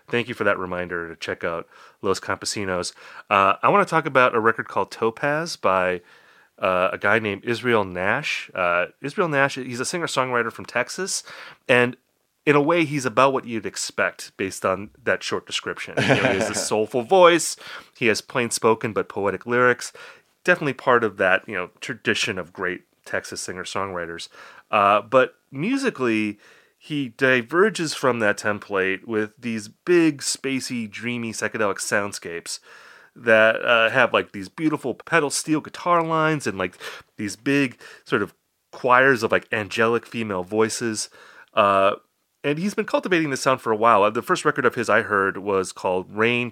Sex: male